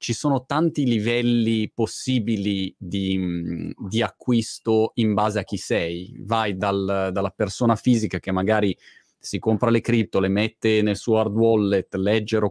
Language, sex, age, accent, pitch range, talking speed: Italian, male, 30-49, native, 95-115 Hz, 150 wpm